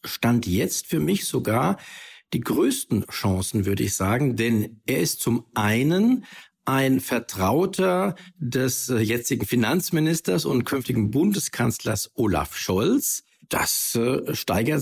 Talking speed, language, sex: 120 wpm, German, male